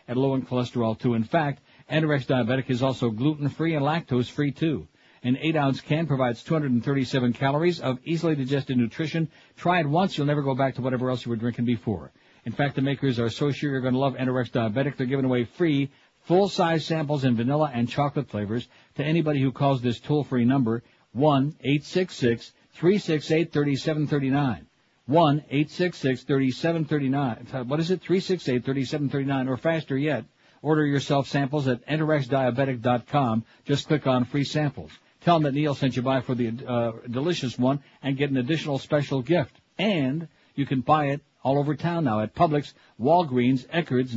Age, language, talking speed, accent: 60-79, English, 165 wpm, American